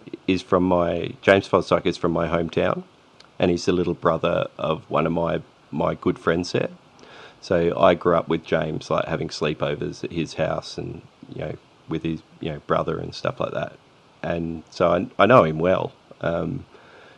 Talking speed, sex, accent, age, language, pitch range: 190 wpm, male, Australian, 30-49, English, 80-90 Hz